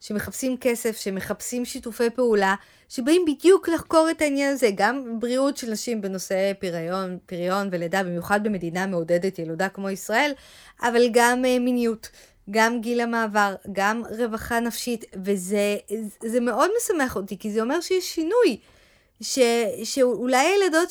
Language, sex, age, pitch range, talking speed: Hebrew, female, 20-39, 200-260 Hz, 130 wpm